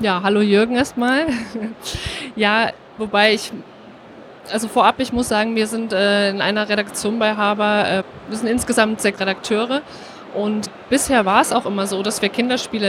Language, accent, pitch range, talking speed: German, German, 200-235 Hz, 170 wpm